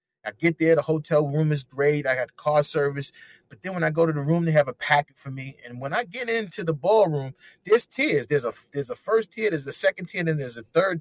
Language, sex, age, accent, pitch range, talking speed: English, male, 30-49, American, 145-185 Hz, 265 wpm